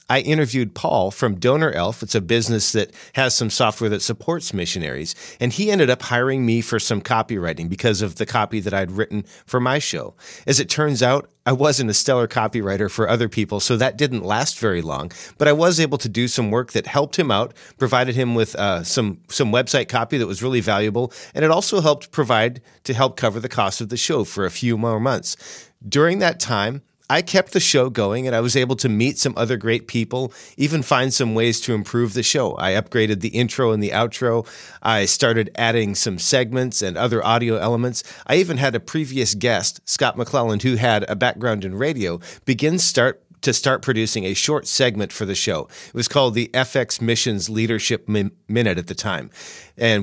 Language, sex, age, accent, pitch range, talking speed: English, male, 40-59, American, 110-135 Hz, 210 wpm